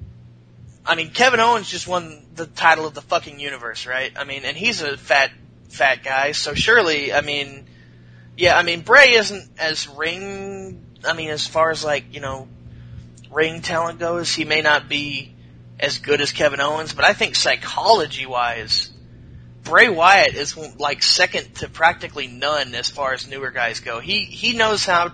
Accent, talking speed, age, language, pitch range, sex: American, 175 wpm, 30-49, English, 135-225 Hz, male